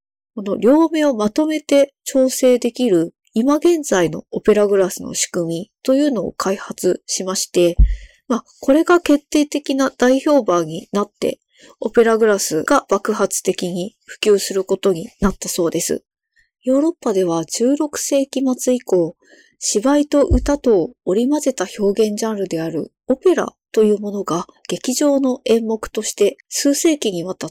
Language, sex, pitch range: Japanese, female, 185-270 Hz